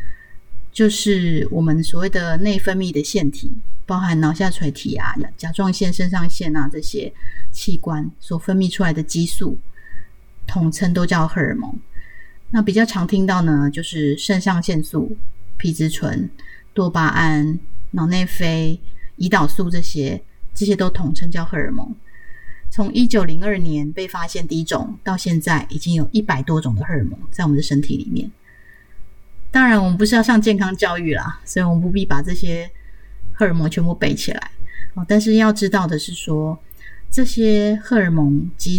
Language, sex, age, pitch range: Chinese, female, 30-49, 150-195 Hz